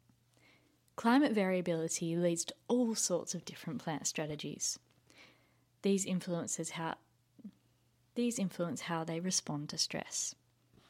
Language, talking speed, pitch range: English, 110 wpm, 165-215 Hz